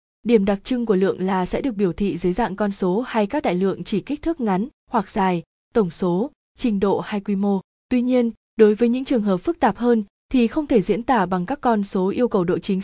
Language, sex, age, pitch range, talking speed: Vietnamese, female, 20-39, 185-240 Hz, 255 wpm